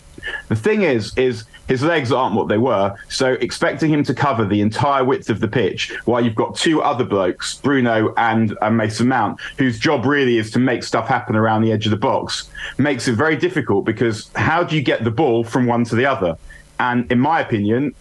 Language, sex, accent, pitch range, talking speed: English, male, British, 115-145 Hz, 215 wpm